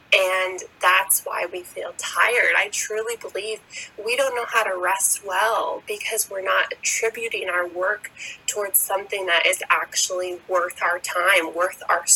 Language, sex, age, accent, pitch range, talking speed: English, female, 20-39, American, 180-225 Hz, 160 wpm